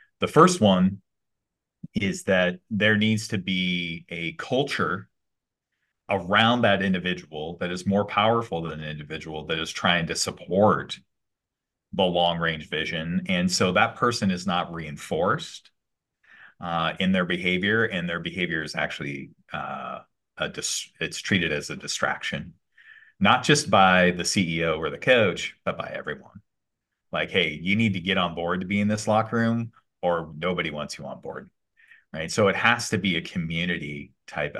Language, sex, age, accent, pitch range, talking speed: English, male, 30-49, American, 80-105 Hz, 160 wpm